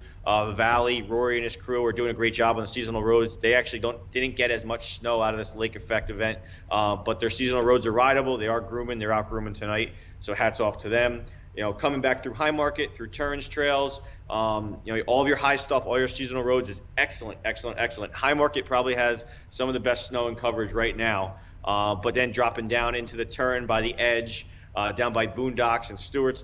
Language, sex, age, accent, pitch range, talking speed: English, male, 30-49, American, 110-125 Hz, 235 wpm